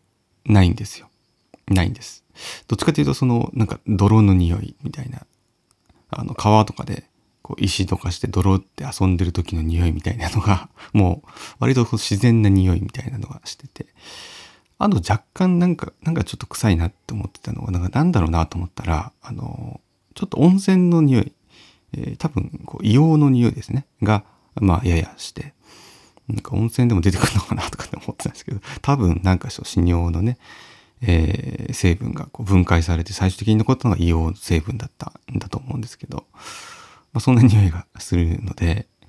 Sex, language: male, Japanese